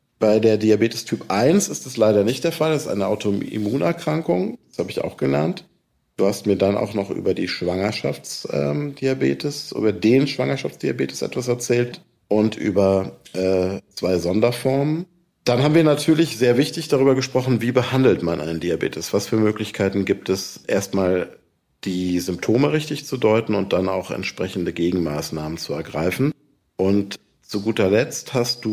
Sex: male